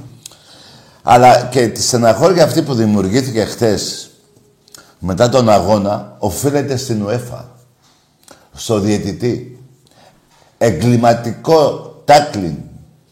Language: Greek